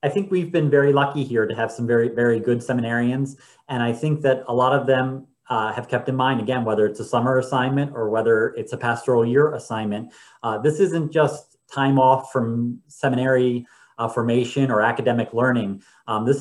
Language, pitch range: English, 120-135 Hz